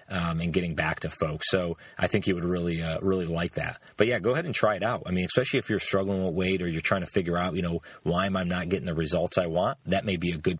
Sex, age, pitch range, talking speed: male, 30-49, 85-100 Hz, 305 wpm